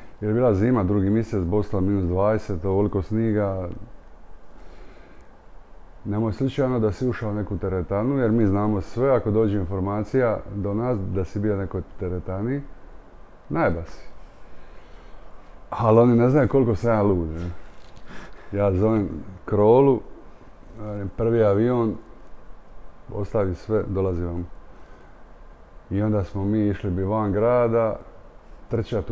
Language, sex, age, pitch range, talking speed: Croatian, male, 30-49, 95-110 Hz, 120 wpm